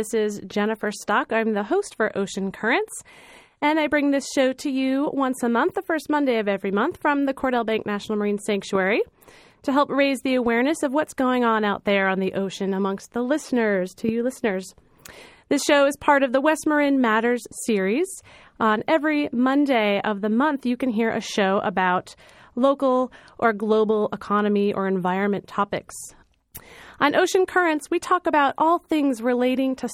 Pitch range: 215-290 Hz